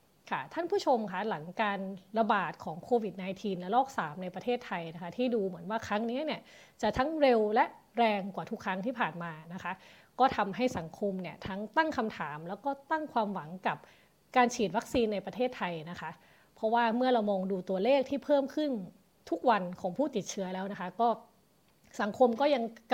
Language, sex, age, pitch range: Thai, female, 20-39, 190-240 Hz